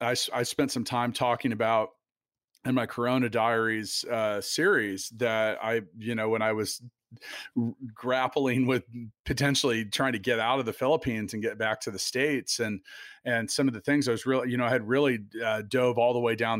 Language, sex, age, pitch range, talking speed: English, male, 40-59, 110-130 Hz, 200 wpm